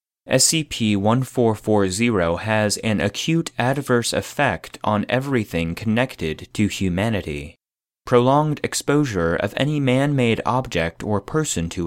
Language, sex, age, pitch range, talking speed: English, male, 30-49, 95-130 Hz, 100 wpm